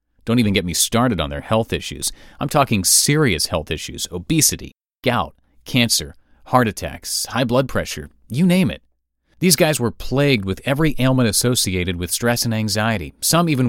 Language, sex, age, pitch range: English, male, 30-49, 90-135 Hz